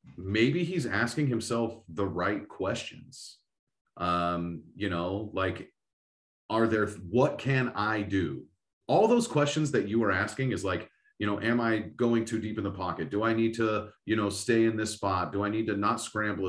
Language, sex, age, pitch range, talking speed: English, male, 30-49, 95-120 Hz, 190 wpm